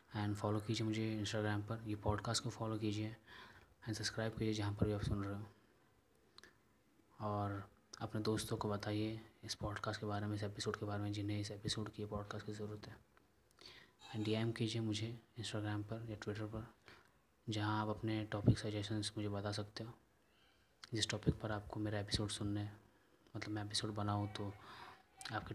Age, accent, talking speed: 20-39, native, 180 wpm